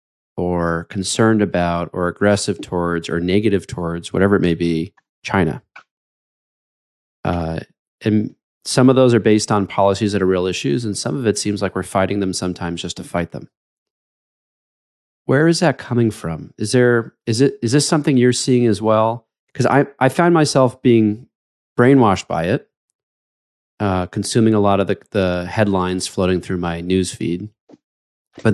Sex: male